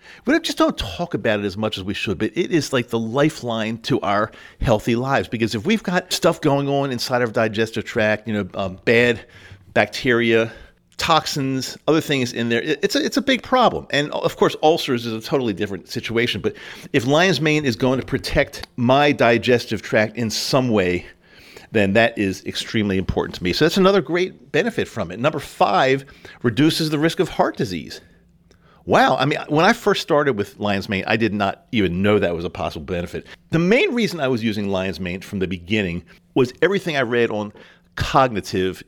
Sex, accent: male, American